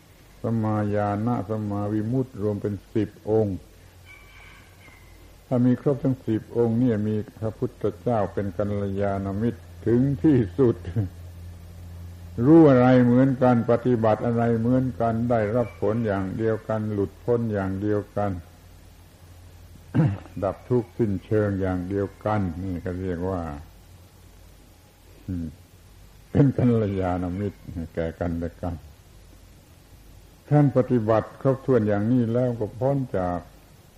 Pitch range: 90-115 Hz